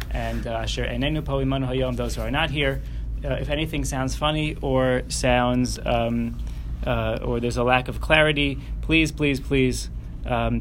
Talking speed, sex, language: 145 wpm, male, English